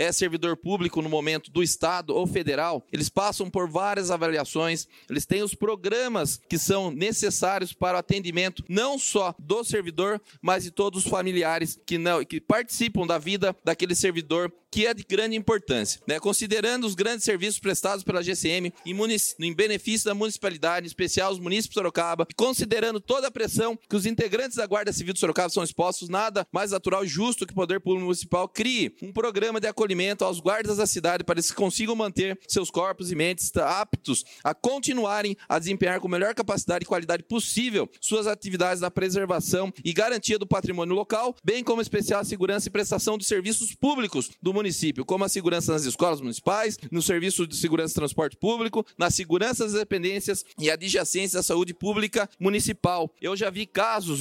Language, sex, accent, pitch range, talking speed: Portuguese, male, Brazilian, 175-210 Hz, 185 wpm